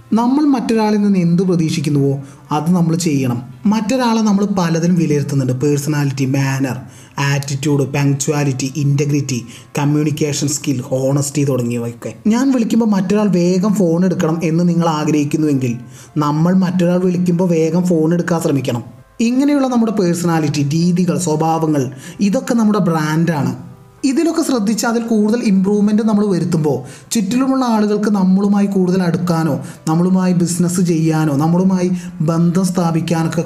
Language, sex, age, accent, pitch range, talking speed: Malayalam, male, 20-39, native, 140-185 Hz, 110 wpm